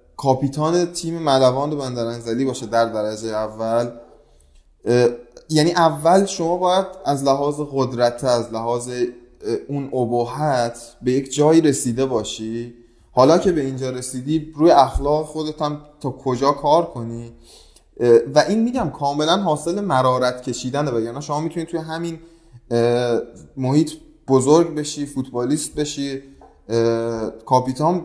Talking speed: 120 wpm